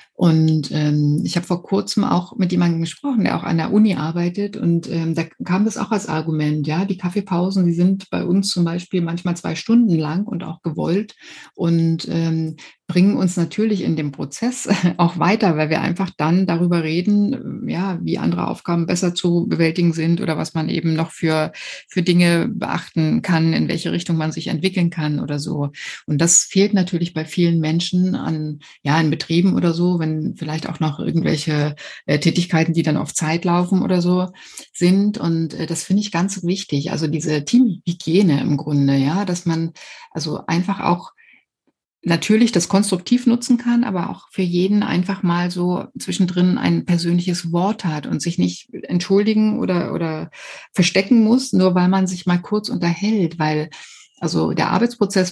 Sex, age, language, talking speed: female, 60-79, German, 180 wpm